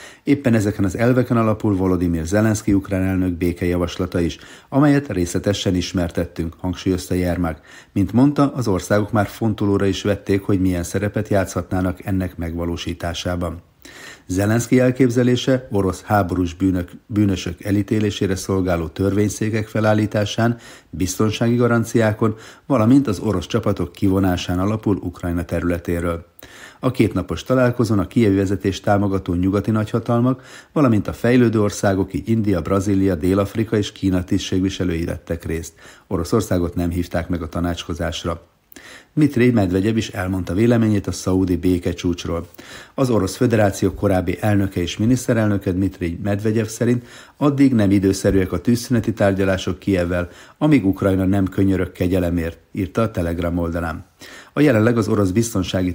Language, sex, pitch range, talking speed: Hungarian, male, 90-110 Hz, 125 wpm